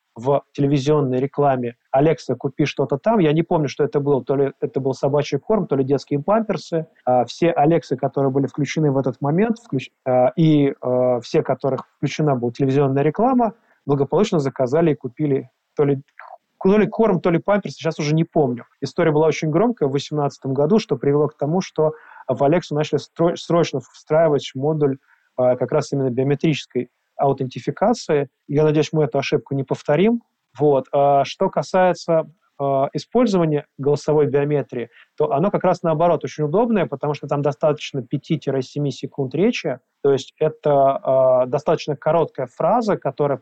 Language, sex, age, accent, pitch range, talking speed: Russian, male, 20-39, native, 140-165 Hz, 155 wpm